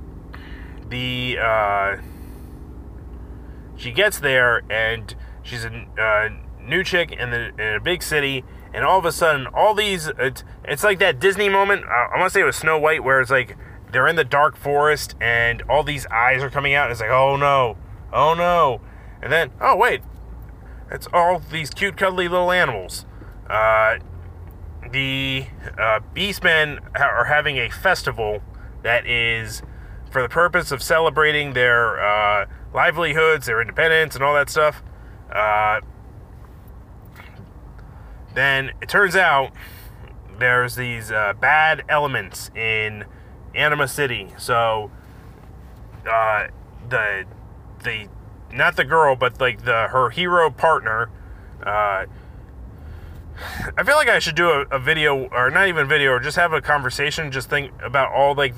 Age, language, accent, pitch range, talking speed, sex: 30-49, English, American, 100-145 Hz, 150 wpm, male